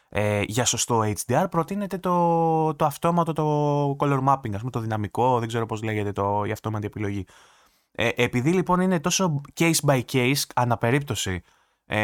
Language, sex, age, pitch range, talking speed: Greek, male, 20-39, 115-145 Hz, 135 wpm